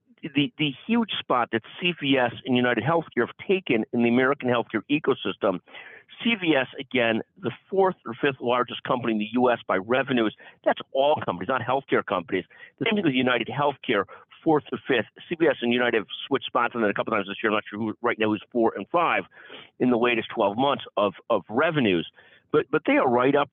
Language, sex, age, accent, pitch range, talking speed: English, male, 50-69, American, 115-145 Hz, 210 wpm